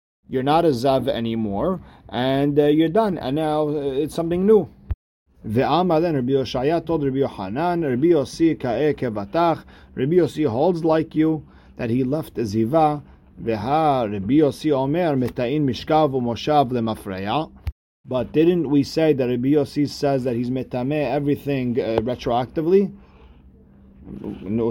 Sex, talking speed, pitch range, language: male, 130 wpm, 115-150 Hz, English